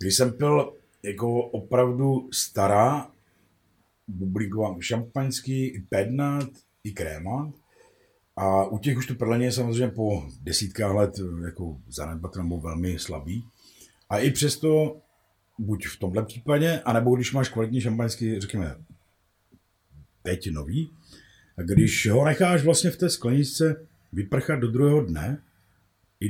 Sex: male